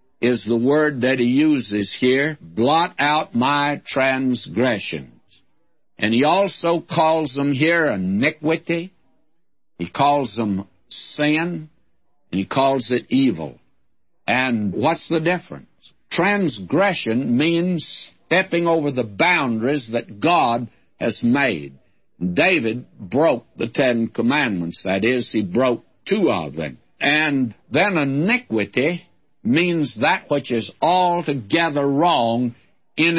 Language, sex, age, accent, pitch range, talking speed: English, male, 60-79, American, 120-165 Hz, 110 wpm